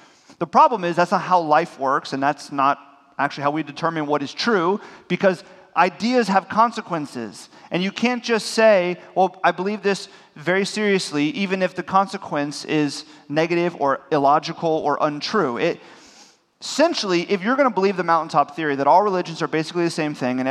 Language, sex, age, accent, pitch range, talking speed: English, male, 30-49, American, 140-185 Hz, 180 wpm